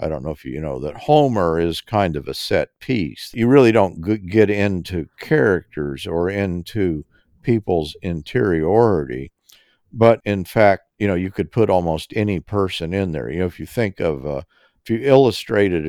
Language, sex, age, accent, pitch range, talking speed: English, male, 50-69, American, 80-115 Hz, 180 wpm